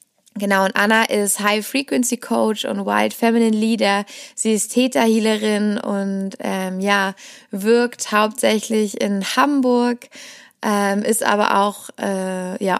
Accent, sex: German, female